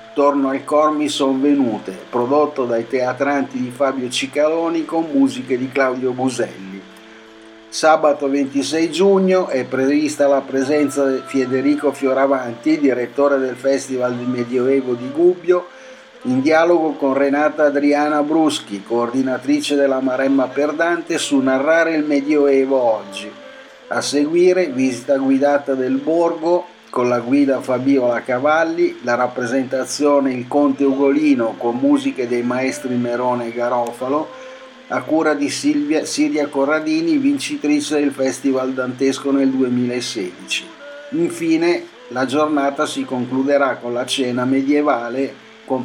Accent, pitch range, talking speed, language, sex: native, 130-155 Hz, 125 wpm, Italian, male